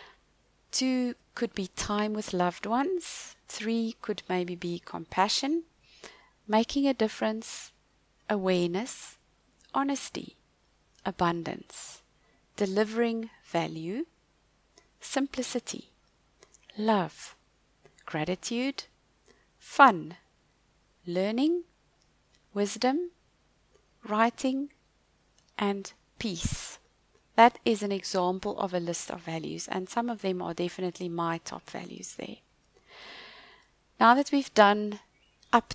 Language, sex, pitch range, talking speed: English, female, 180-235 Hz, 90 wpm